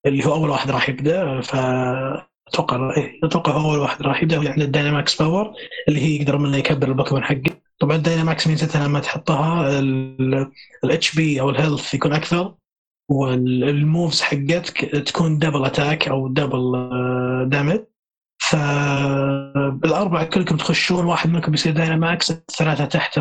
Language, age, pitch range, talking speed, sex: Arabic, 20-39, 140-165 Hz, 145 wpm, male